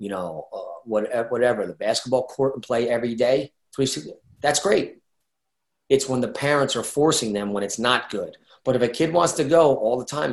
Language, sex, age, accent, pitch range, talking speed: English, male, 30-49, American, 115-140 Hz, 205 wpm